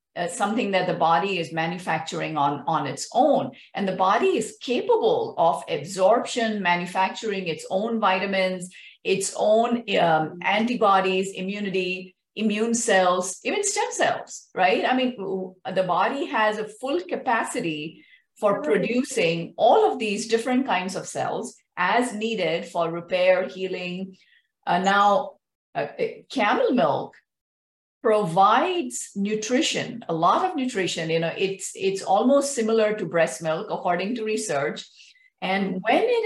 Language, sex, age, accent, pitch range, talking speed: English, female, 50-69, Indian, 185-255 Hz, 135 wpm